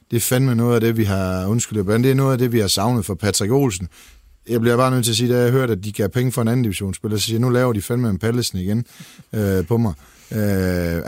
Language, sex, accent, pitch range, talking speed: Danish, male, native, 105-135 Hz, 270 wpm